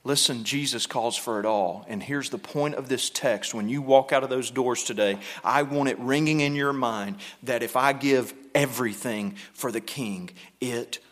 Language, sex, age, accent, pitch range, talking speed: English, male, 40-59, American, 135-170 Hz, 200 wpm